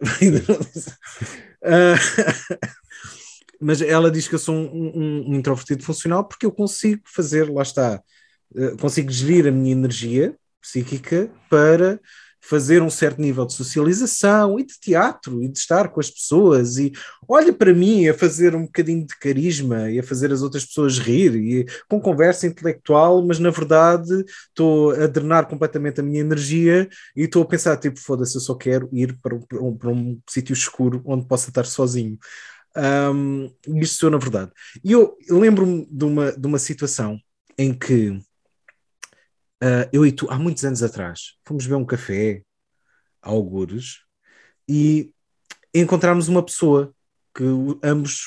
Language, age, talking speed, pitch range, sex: Portuguese, 20-39, 155 wpm, 130-170 Hz, male